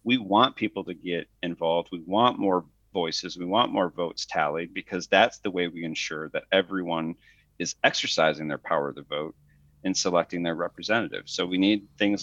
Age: 40-59